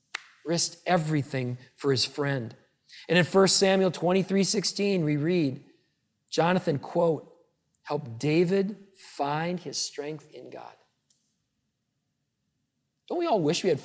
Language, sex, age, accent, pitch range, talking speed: English, male, 40-59, American, 135-170 Hz, 120 wpm